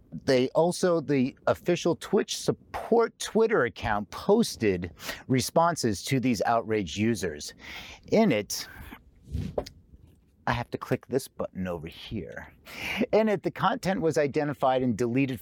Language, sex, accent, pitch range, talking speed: English, male, American, 110-165 Hz, 125 wpm